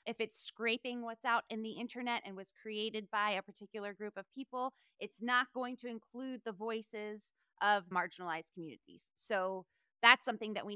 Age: 20-39